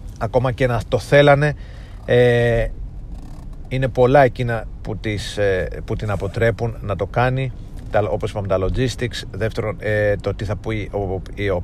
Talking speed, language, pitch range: 135 wpm, Greek, 100-115 Hz